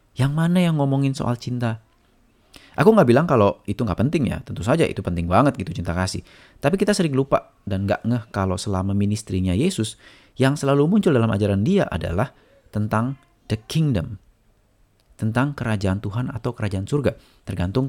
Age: 30-49